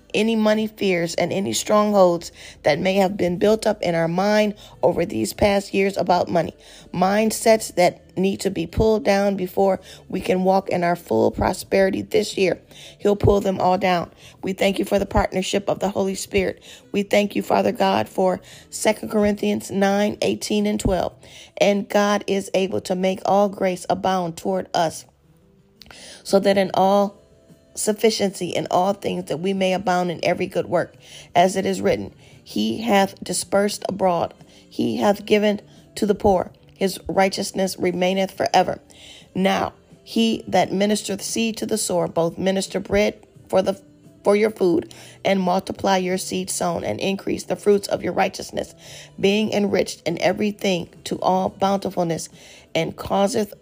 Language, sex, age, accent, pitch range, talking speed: English, female, 40-59, American, 175-205 Hz, 165 wpm